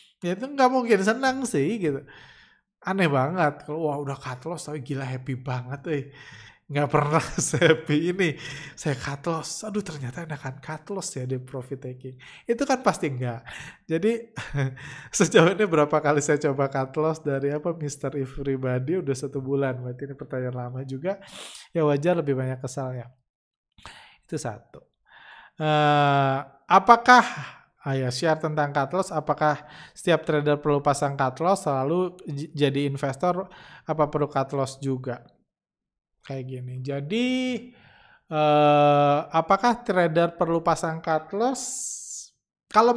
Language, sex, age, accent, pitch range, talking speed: Indonesian, male, 20-39, native, 135-180 Hz, 140 wpm